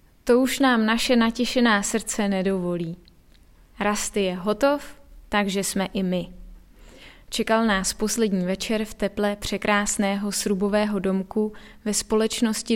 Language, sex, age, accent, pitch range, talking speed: Czech, female, 20-39, native, 200-235 Hz, 120 wpm